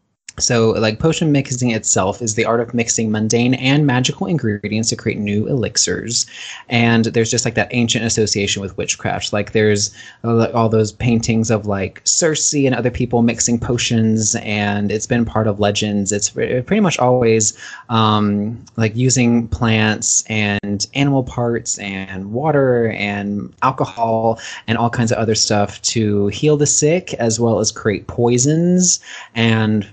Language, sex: English, male